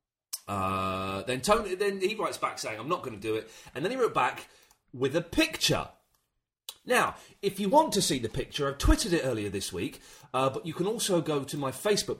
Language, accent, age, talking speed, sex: English, British, 30-49, 220 wpm, male